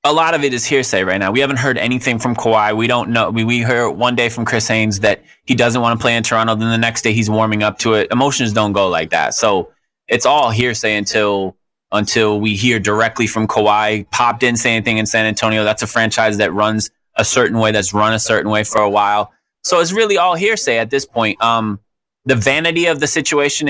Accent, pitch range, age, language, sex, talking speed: American, 105-125 Hz, 20-39, English, male, 240 wpm